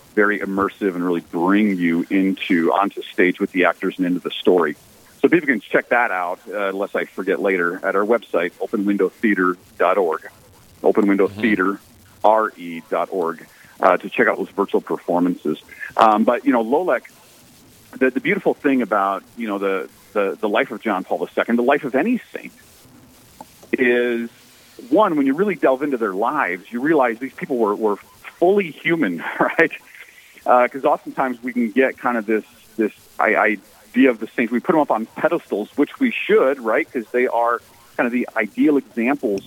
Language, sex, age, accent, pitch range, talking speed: English, male, 40-59, American, 100-130 Hz, 175 wpm